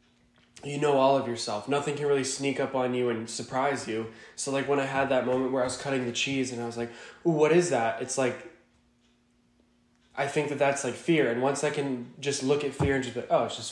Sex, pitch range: male, 120-145 Hz